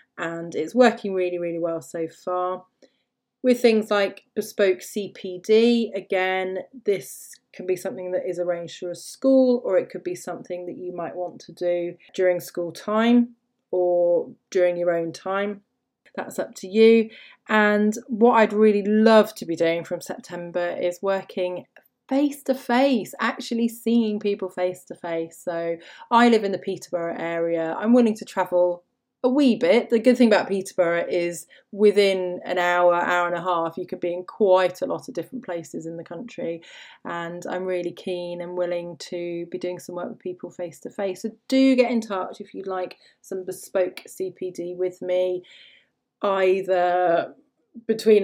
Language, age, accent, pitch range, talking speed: English, 30-49, British, 175-225 Hz, 170 wpm